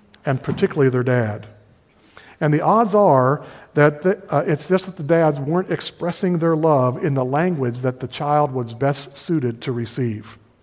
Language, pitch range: English, 130-155 Hz